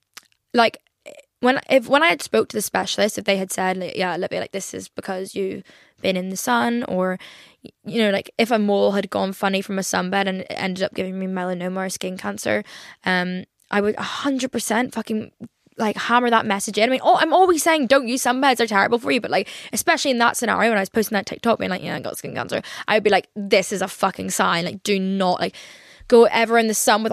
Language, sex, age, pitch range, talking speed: English, female, 10-29, 195-230 Hz, 250 wpm